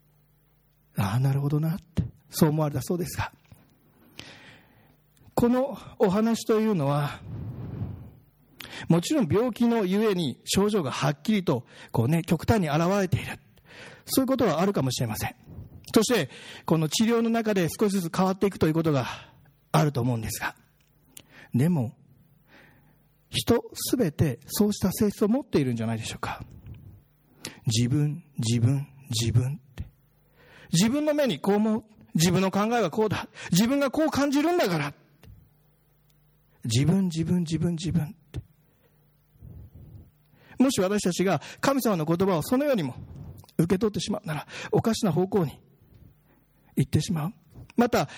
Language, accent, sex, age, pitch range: Japanese, native, male, 40-59, 135-200 Hz